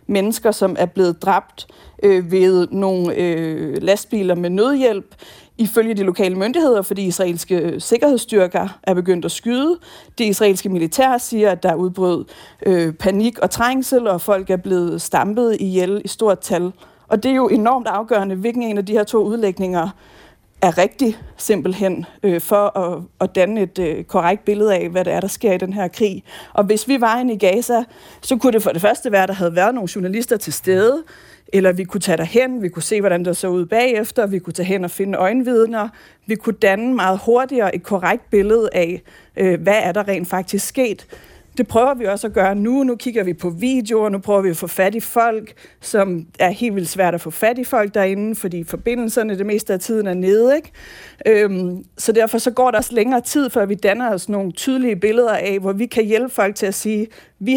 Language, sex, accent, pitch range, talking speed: Danish, female, native, 185-230 Hz, 210 wpm